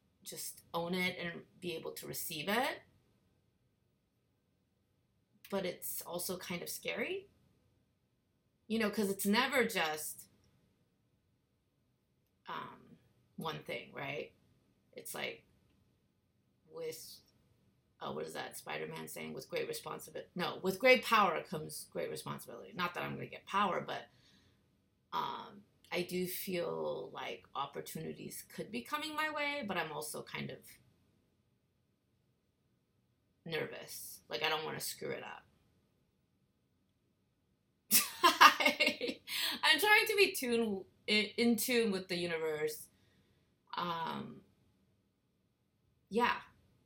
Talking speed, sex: 115 wpm, female